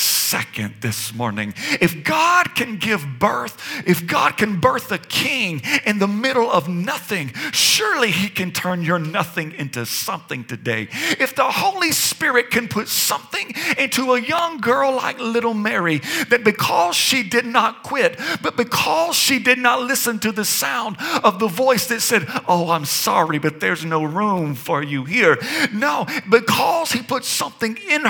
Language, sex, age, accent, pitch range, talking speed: English, male, 50-69, American, 170-260 Hz, 165 wpm